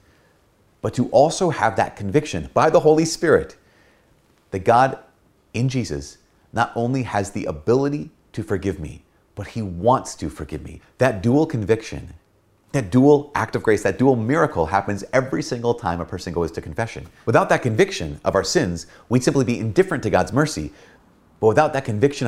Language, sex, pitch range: English, male, 90-130 Hz